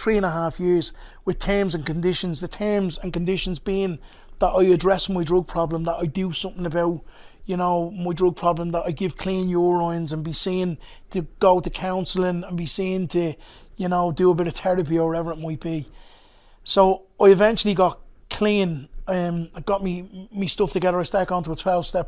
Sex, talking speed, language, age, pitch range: male, 205 wpm, English, 30-49, 170-190 Hz